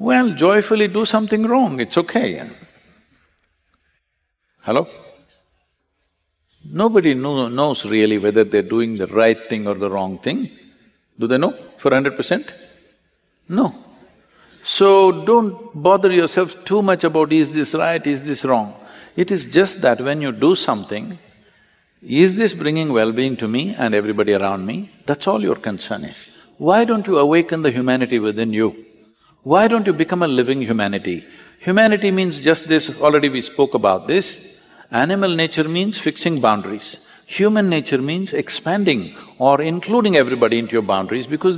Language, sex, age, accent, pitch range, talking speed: English, male, 60-79, Indian, 125-195 Hz, 150 wpm